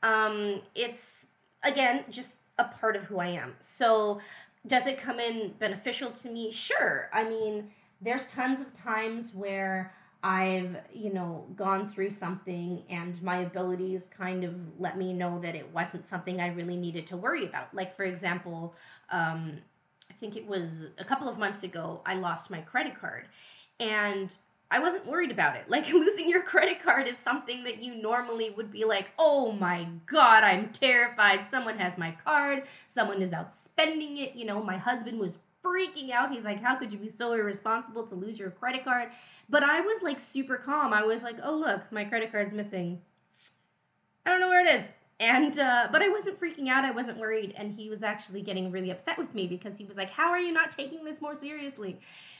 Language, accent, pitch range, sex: English, American, 185-255 Hz, female